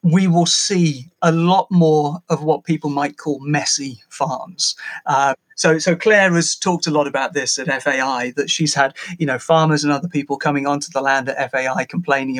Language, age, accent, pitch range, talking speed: English, 40-59, British, 145-175 Hz, 200 wpm